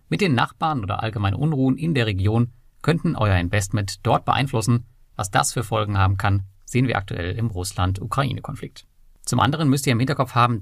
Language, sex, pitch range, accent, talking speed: German, male, 105-135 Hz, German, 180 wpm